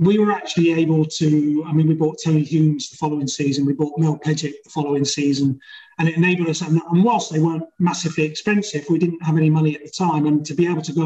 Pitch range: 145-170 Hz